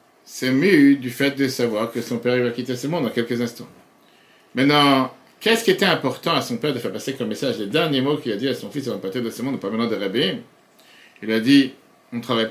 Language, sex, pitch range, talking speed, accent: French, male, 120-160 Hz, 260 wpm, French